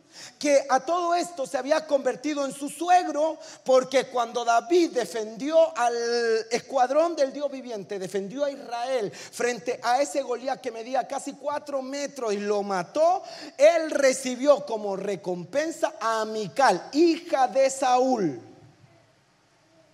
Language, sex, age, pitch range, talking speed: Spanish, male, 40-59, 220-295 Hz, 130 wpm